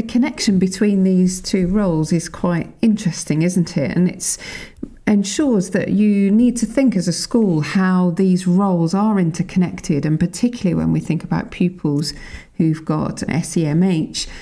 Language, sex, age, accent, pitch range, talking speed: English, female, 40-59, British, 170-215 Hz, 155 wpm